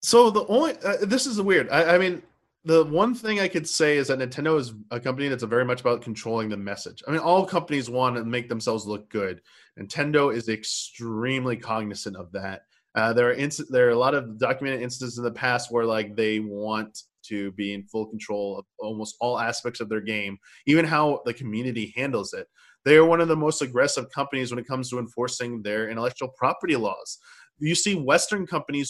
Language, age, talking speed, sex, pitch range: English, 20-39, 215 wpm, male, 120-160 Hz